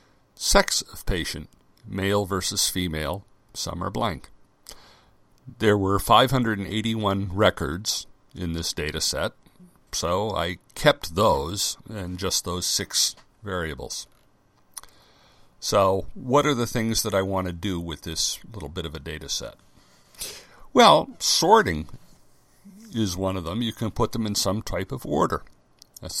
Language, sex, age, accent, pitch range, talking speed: English, male, 60-79, American, 90-115 Hz, 135 wpm